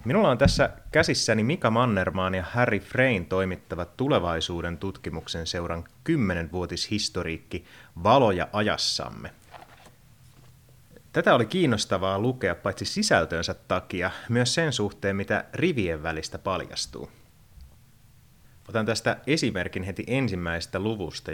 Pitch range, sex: 95-125 Hz, male